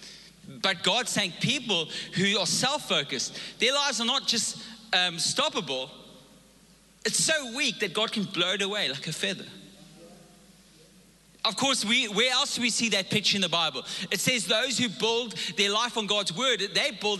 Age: 30-49